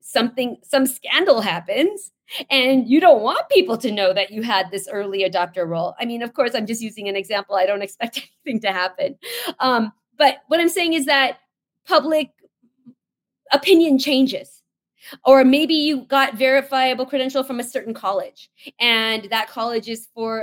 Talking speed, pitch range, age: 170 wpm, 215-290 Hz, 30-49